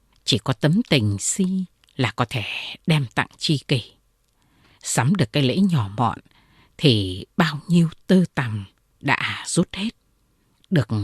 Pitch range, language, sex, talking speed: 120-190 Hz, Vietnamese, female, 145 wpm